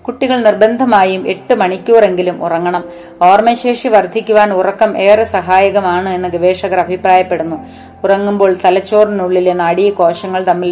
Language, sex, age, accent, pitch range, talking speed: Malayalam, female, 30-49, native, 180-210 Hz, 95 wpm